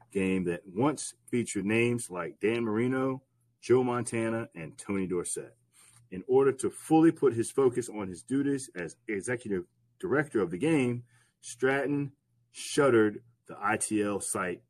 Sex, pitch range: male, 115-140 Hz